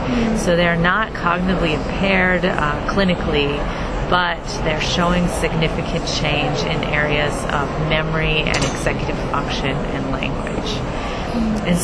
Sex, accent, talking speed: female, American, 110 wpm